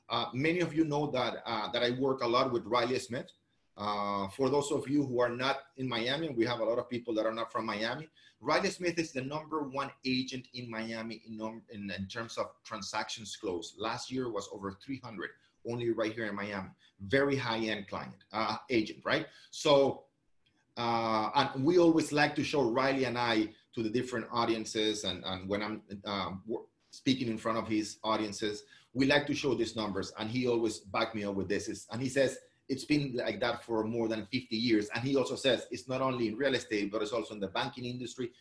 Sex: male